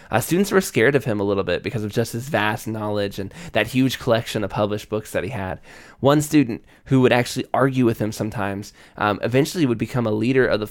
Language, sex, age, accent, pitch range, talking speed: English, male, 20-39, American, 105-125 Hz, 235 wpm